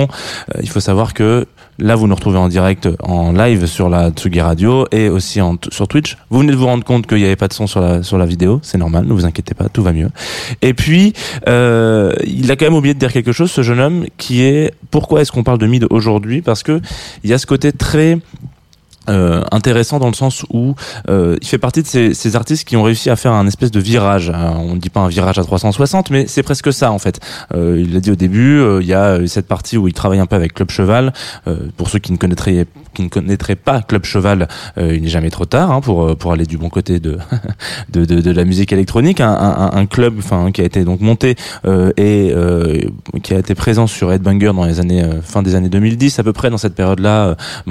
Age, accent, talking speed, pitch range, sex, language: 20-39, French, 255 wpm, 90-120 Hz, male, French